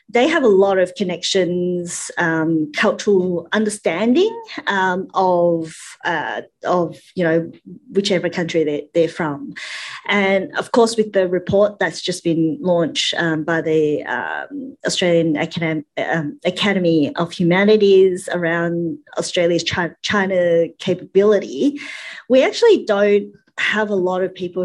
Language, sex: English, female